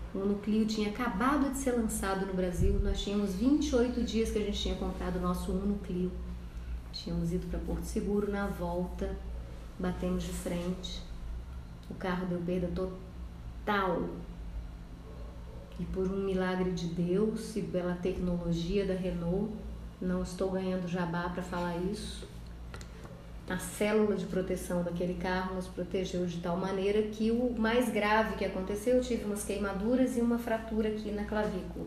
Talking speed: 155 wpm